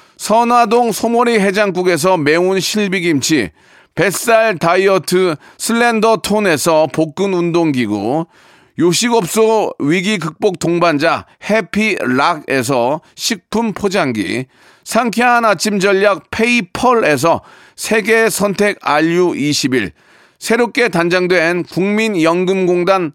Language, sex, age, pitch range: Korean, male, 40-59, 175-225 Hz